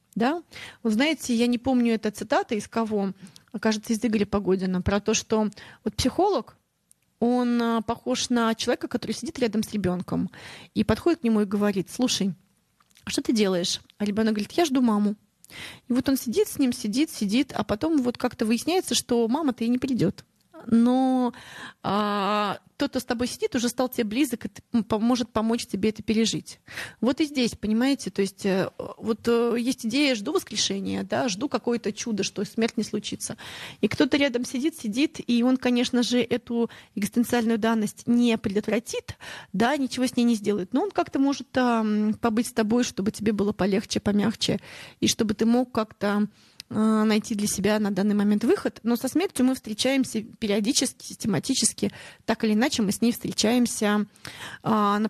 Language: Russian